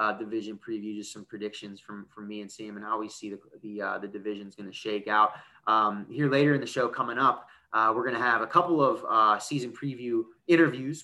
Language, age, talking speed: English, 20-39, 240 wpm